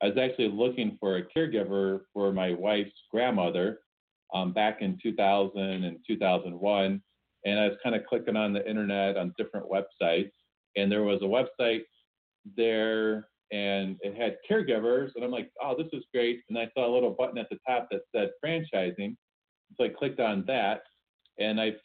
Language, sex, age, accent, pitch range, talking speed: English, male, 40-59, American, 100-115 Hz, 180 wpm